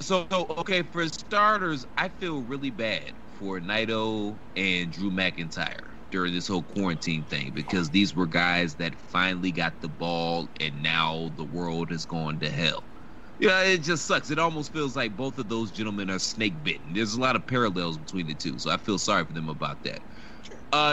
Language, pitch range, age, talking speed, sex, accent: English, 95-145 Hz, 30-49, 200 wpm, male, American